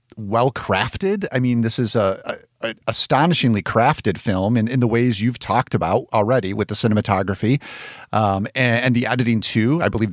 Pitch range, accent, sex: 110-135 Hz, American, male